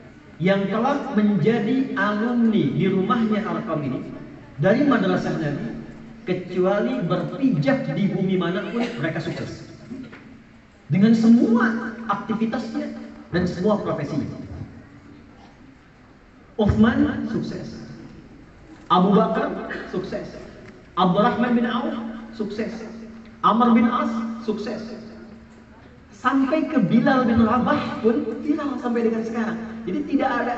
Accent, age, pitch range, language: native, 40-59, 185-235 Hz, Indonesian